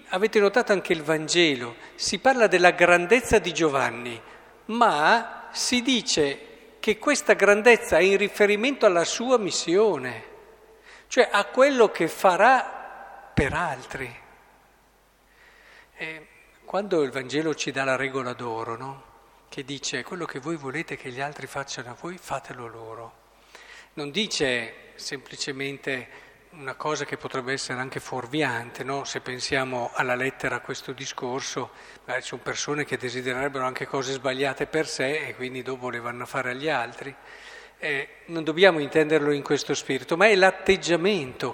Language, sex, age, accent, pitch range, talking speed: Italian, male, 50-69, native, 135-210 Hz, 145 wpm